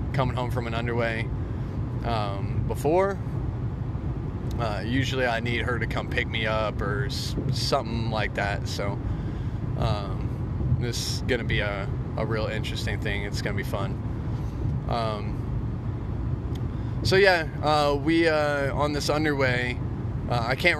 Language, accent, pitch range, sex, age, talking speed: English, American, 115-135 Hz, male, 20-39, 145 wpm